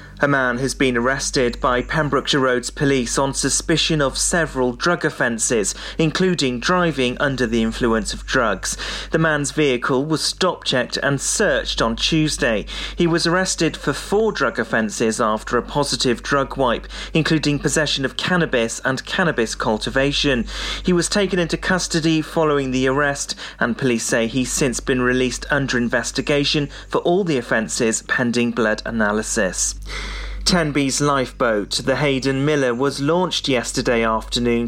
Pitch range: 125-160 Hz